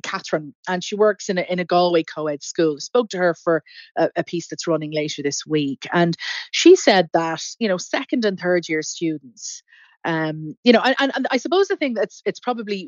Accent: Irish